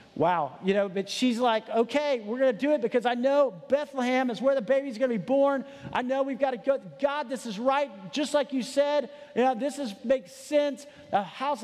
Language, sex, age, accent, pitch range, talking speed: English, male, 40-59, American, 230-285 Hz, 235 wpm